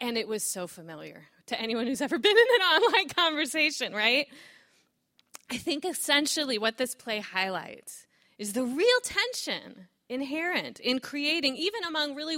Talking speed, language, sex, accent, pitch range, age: 155 wpm, English, female, American, 210-295 Hz, 20-39